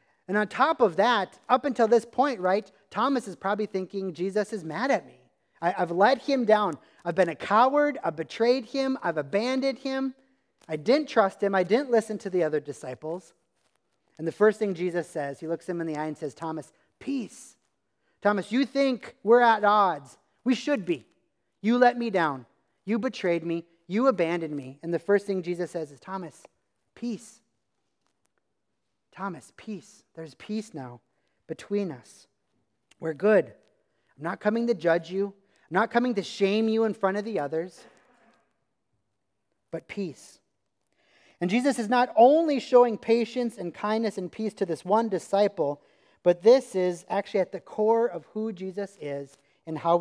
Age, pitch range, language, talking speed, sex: 30-49, 165-225 Hz, English, 175 wpm, male